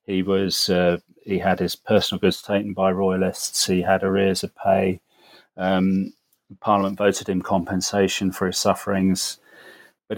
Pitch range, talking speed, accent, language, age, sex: 95-110 Hz, 145 wpm, British, English, 40-59, male